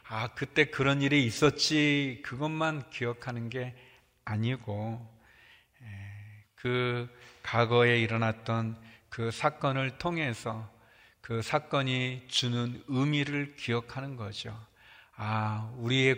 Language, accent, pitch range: Korean, native, 115-130 Hz